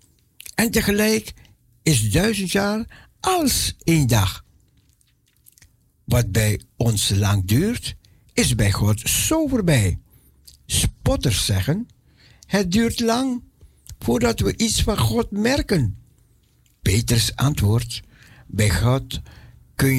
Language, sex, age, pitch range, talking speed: Dutch, male, 60-79, 105-150 Hz, 100 wpm